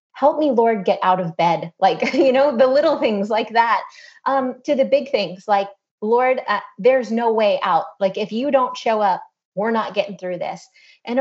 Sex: female